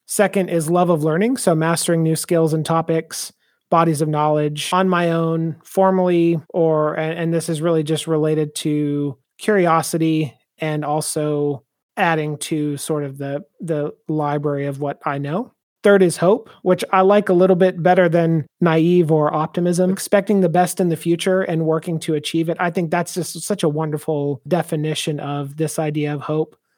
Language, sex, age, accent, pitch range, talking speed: English, male, 30-49, American, 155-175 Hz, 175 wpm